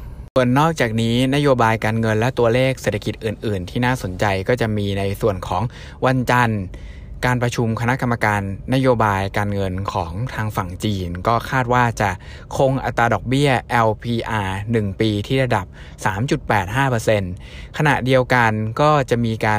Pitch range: 105-125 Hz